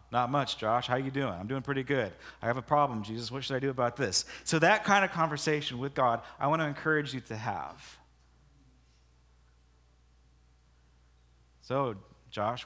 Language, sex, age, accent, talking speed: English, male, 40-59, American, 180 wpm